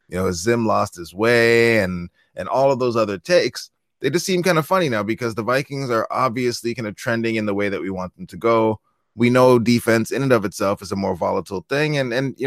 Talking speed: 250 wpm